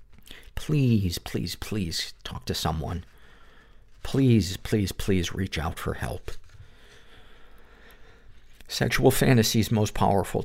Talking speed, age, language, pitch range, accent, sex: 105 wpm, 50-69, English, 95-115 Hz, American, male